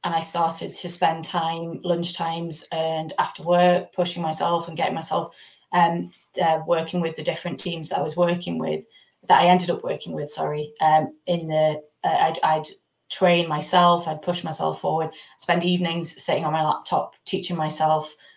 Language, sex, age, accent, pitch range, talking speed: English, female, 20-39, British, 165-180 Hz, 185 wpm